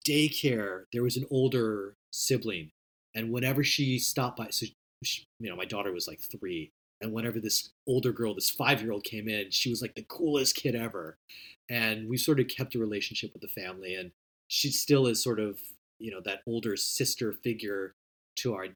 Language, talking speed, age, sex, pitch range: English, 190 wpm, 30-49, male, 105-140 Hz